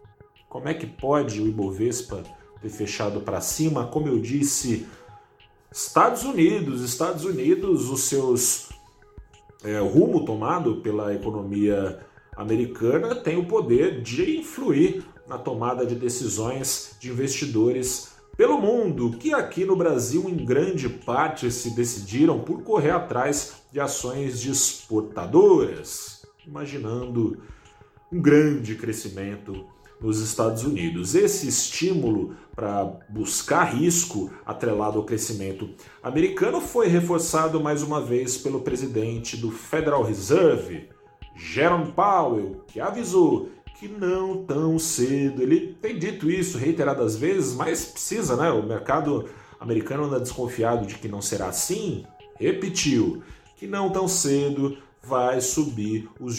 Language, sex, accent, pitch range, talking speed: Portuguese, male, Brazilian, 110-165 Hz, 120 wpm